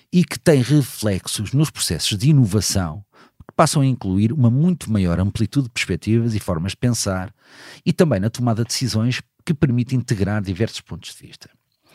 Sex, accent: male, Portuguese